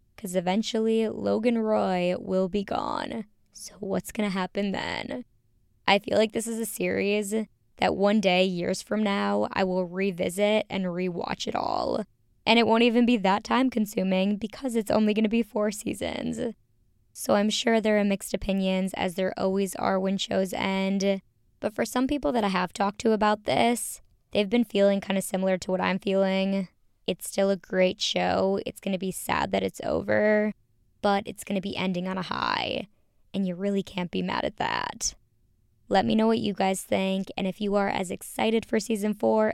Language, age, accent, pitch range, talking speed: English, 20-39, American, 185-215 Hz, 195 wpm